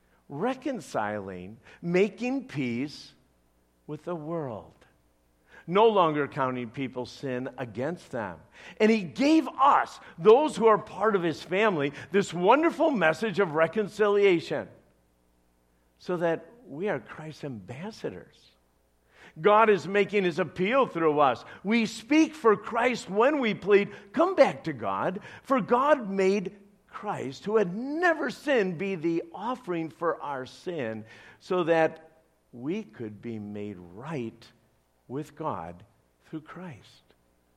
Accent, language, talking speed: American, English, 125 wpm